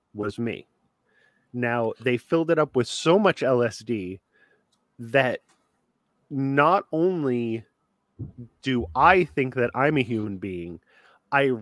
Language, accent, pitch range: English, American, 115-140 Hz